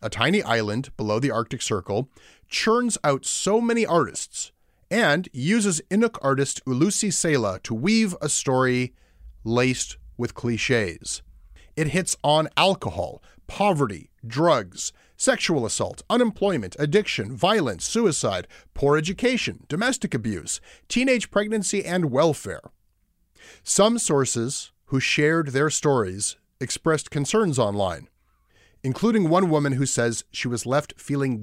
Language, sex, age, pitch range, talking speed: English, male, 30-49, 110-165 Hz, 120 wpm